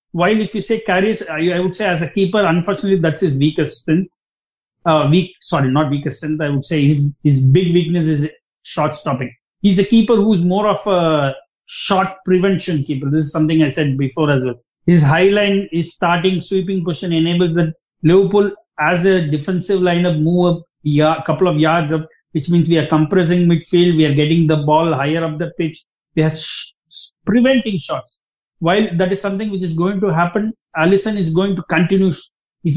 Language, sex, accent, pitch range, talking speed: English, male, Indian, 155-195 Hz, 195 wpm